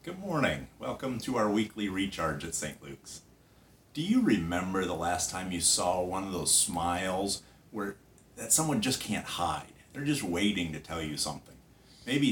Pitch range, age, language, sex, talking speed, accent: 80-105 Hz, 50-69, English, male, 175 wpm, American